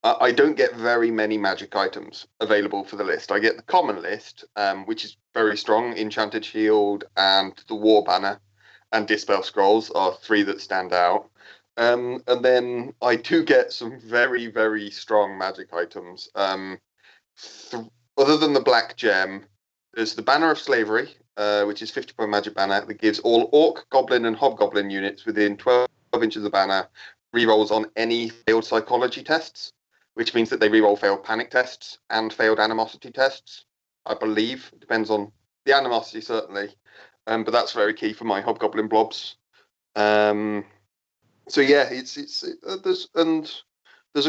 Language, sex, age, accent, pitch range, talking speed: English, male, 30-49, British, 105-125 Hz, 170 wpm